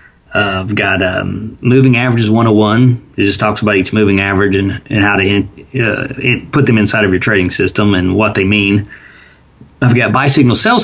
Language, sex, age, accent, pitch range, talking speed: English, male, 30-49, American, 95-120 Hz, 200 wpm